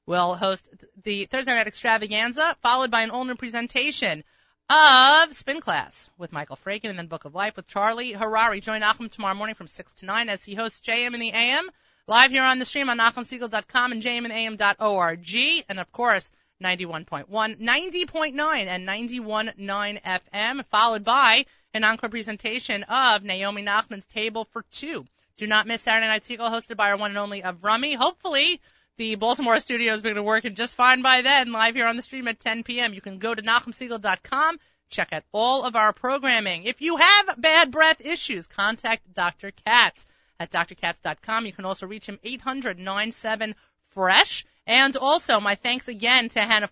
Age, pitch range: 30-49, 205-255 Hz